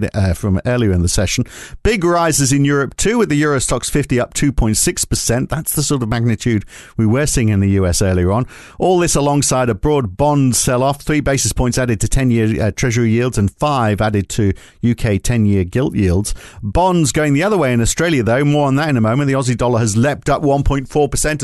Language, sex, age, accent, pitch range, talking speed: English, male, 50-69, British, 110-145 Hz, 215 wpm